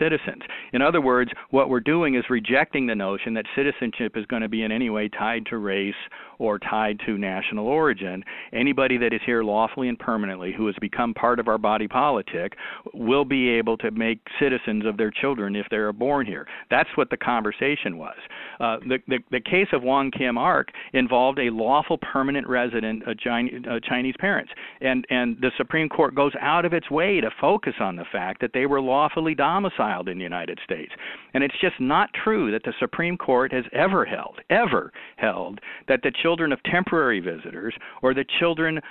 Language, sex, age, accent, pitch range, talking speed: English, male, 50-69, American, 110-140 Hz, 195 wpm